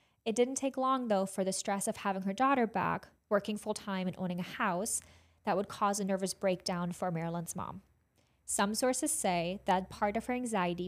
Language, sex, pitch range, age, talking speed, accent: English, female, 185-215 Hz, 20-39, 205 wpm, American